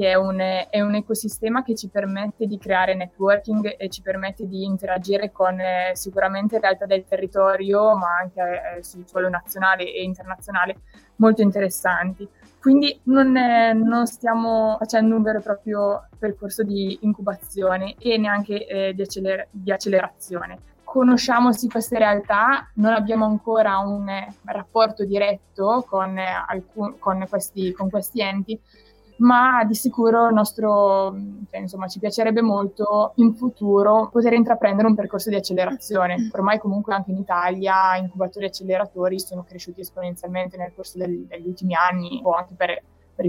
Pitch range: 185-215 Hz